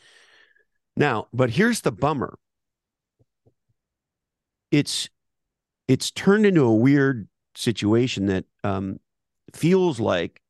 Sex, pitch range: male, 100-125 Hz